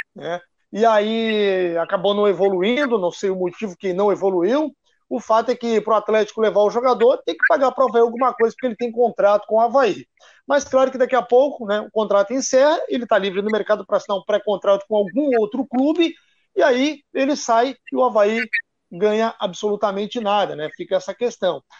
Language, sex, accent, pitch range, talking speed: Portuguese, male, Brazilian, 205-265 Hz, 205 wpm